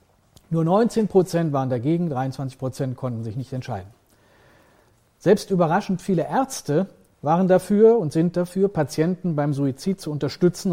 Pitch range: 140-180 Hz